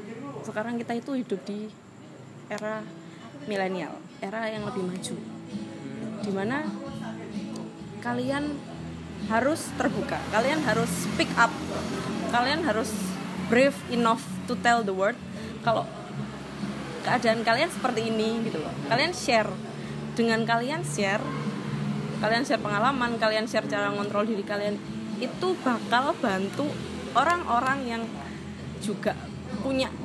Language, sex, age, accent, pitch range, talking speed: Indonesian, female, 20-39, native, 195-235 Hz, 110 wpm